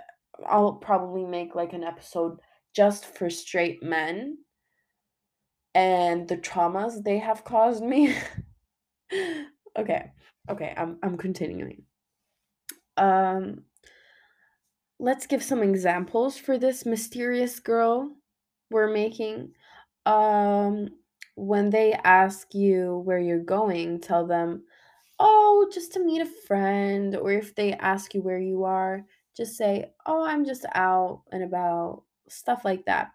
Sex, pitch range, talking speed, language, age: female, 185-240 Hz, 125 wpm, English, 20-39